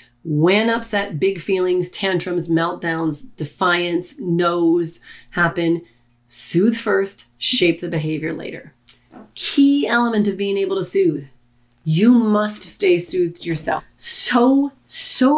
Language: English